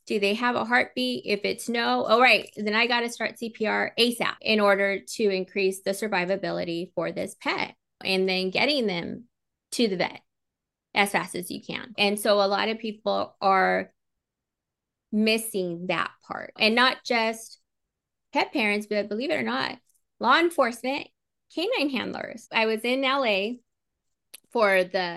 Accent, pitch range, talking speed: American, 190-230 Hz, 160 wpm